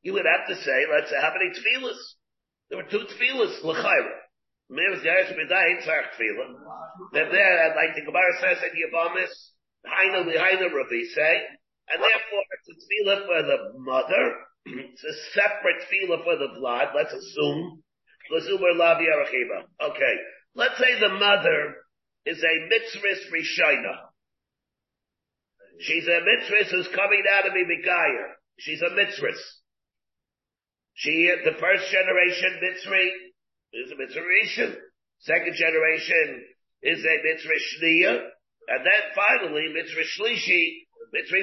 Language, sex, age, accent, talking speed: English, male, 50-69, American, 135 wpm